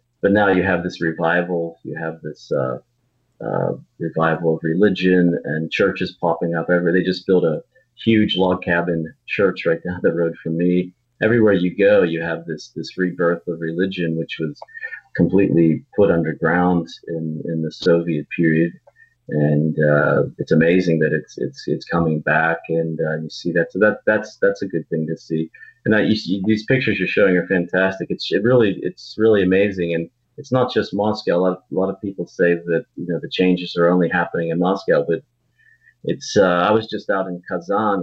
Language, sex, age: English, male, 40-59